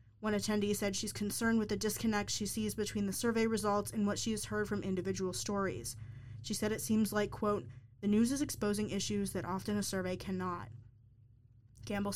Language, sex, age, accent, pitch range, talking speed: English, female, 20-39, American, 185-215 Hz, 190 wpm